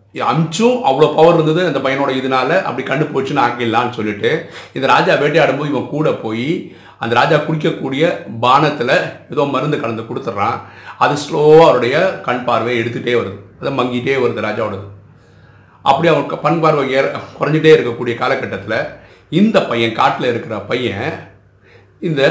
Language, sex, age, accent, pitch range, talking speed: Tamil, male, 50-69, native, 110-145 Hz, 135 wpm